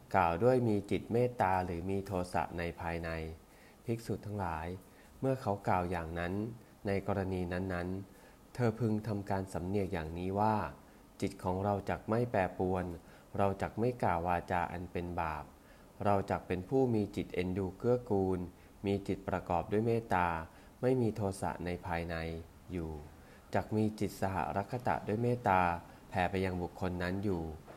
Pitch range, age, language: 85-105 Hz, 20-39, English